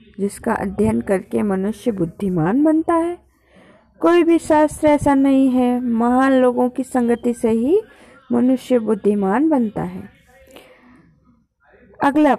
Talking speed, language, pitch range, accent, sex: 115 wpm, Hindi, 210-280 Hz, native, female